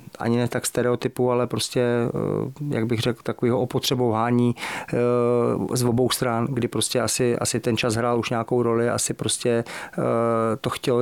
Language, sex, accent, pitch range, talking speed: Czech, male, native, 115-120 Hz, 150 wpm